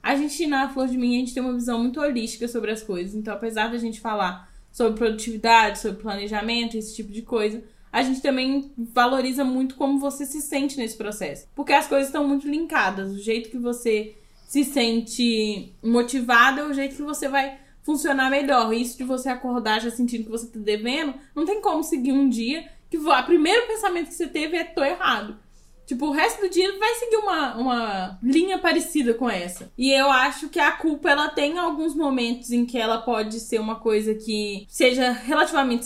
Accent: Brazilian